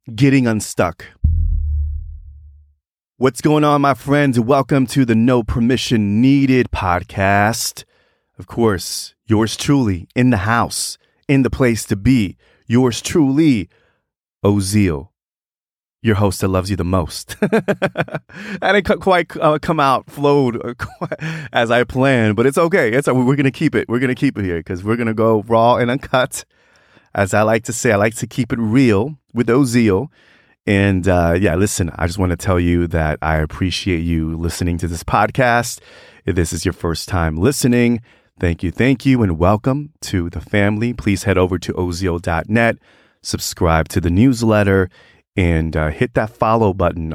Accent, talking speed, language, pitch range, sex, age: American, 165 wpm, English, 90-130 Hz, male, 30-49